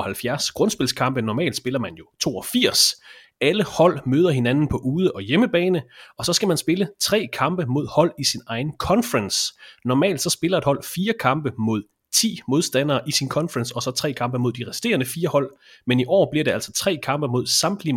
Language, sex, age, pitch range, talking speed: English, male, 30-49, 125-160 Hz, 200 wpm